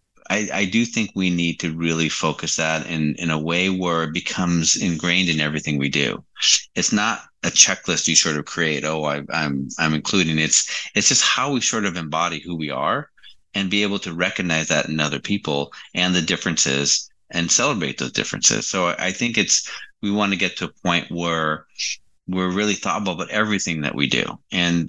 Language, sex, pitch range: English, male, 75-90 Hz